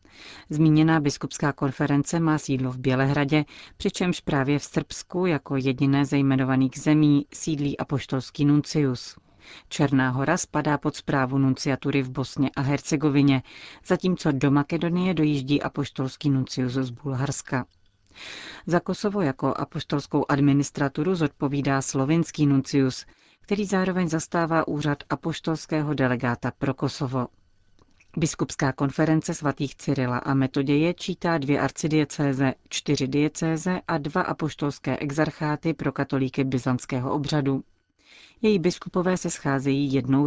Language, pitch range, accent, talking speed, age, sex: Czech, 135-155 Hz, native, 115 wpm, 40-59, female